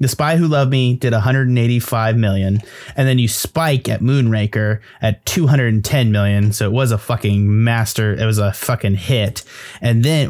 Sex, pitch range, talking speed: male, 105-130 Hz, 175 wpm